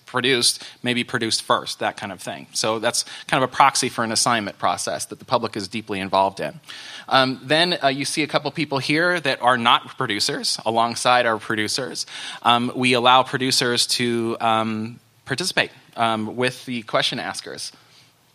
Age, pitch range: 20-39, 115-140 Hz